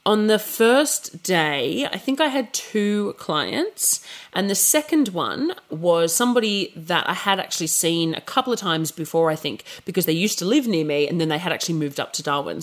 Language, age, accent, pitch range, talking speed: English, 30-49, Australian, 165-240 Hz, 210 wpm